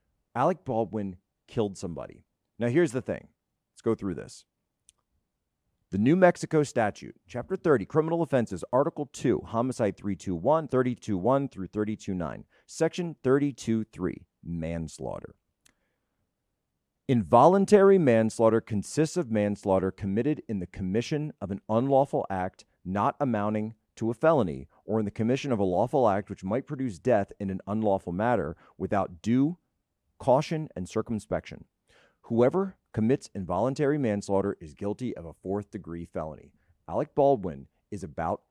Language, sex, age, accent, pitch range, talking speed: English, male, 40-59, American, 95-150 Hz, 130 wpm